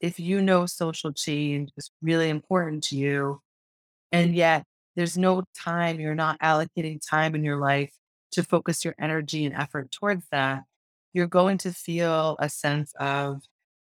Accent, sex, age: American, female, 30-49